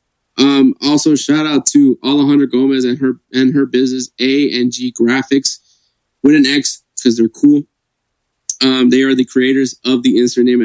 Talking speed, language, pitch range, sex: 150 wpm, English, 120-140 Hz, male